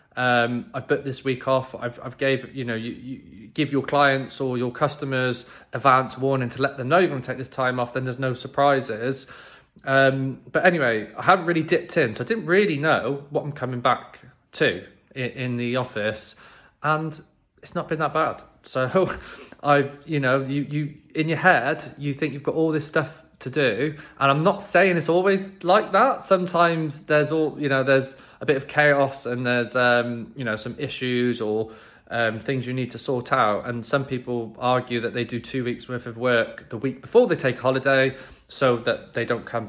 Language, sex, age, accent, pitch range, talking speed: English, male, 20-39, British, 125-160 Hz, 210 wpm